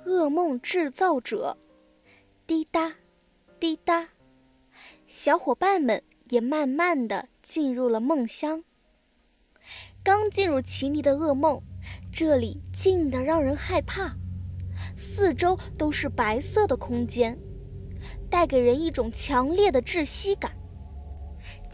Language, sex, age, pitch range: Chinese, female, 20-39, 240-345 Hz